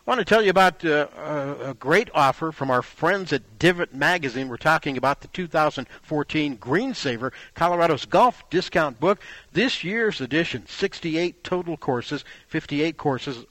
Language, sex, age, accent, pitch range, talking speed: English, male, 50-69, American, 135-175 Hz, 155 wpm